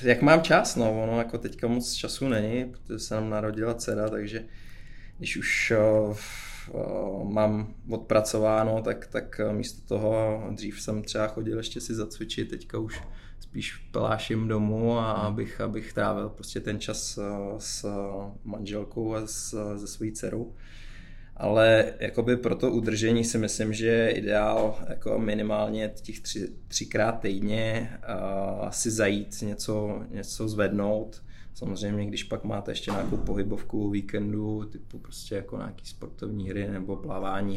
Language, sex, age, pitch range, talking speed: Czech, male, 20-39, 100-110 Hz, 135 wpm